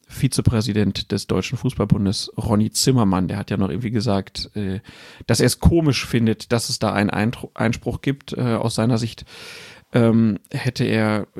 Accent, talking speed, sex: German, 145 wpm, male